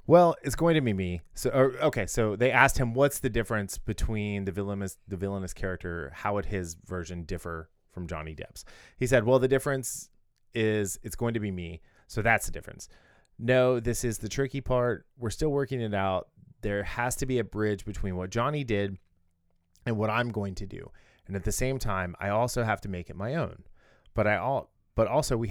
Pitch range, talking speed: 90-120 Hz, 215 wpm